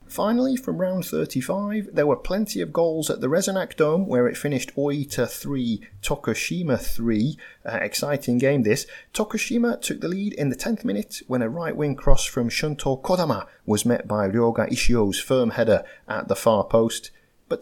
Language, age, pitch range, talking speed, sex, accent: English, 30-49, 110-180 Hz, 170 wpm, male, British